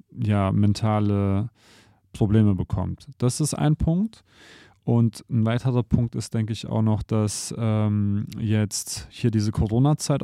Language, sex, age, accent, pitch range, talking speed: German, male, 20-39, German, 105-125 Hz, 135 wpm